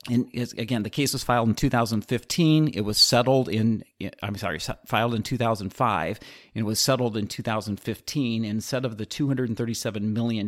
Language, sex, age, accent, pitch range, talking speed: English, male, 40-59, American, 100-120 Hz, 160 wpm